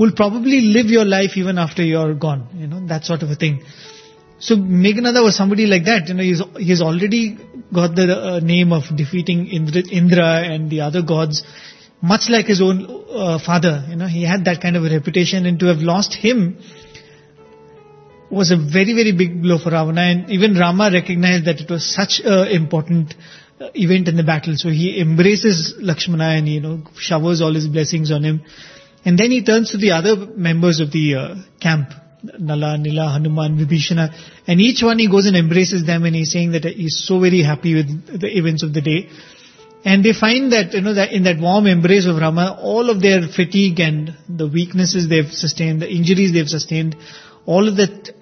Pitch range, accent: 160-195 Hz, Indian